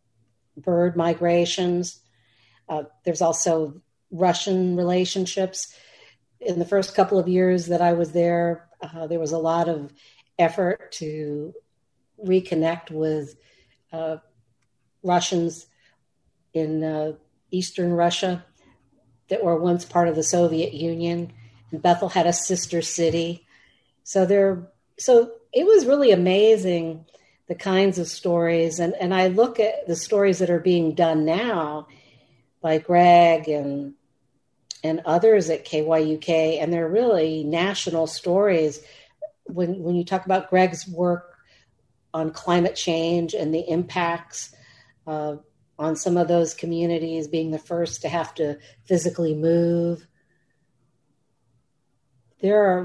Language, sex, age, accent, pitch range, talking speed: English, female, 50-69, American, 155-180 Hz, 125 wpm